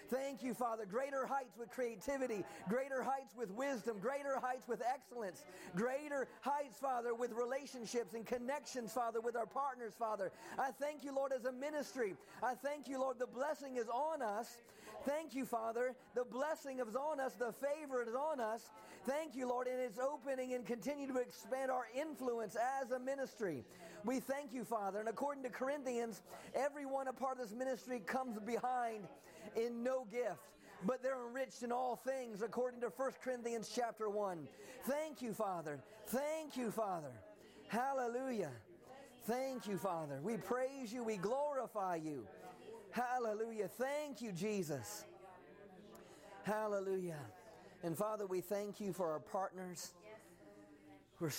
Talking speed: 155 wpm